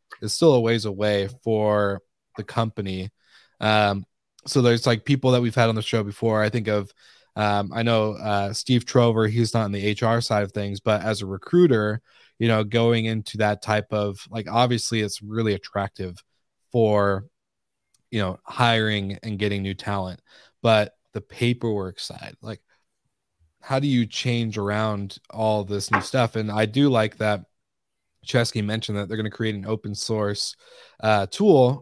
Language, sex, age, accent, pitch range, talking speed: English, male, 20-39, American, 105-115 Hz, 175 wpm